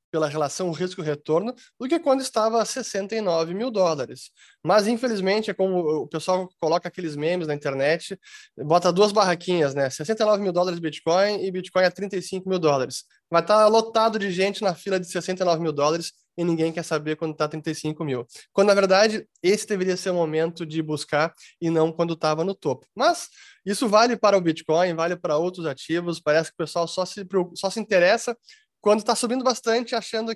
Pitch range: 160-215 Hz